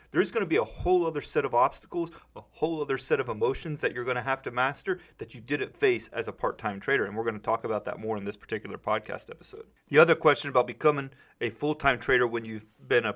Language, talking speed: English, 255 wpm